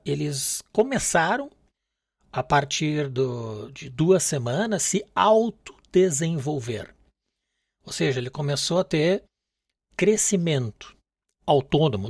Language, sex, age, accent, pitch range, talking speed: Portuguese, male, 60-79, Brazilian, 135-185 Hz, 90 wpm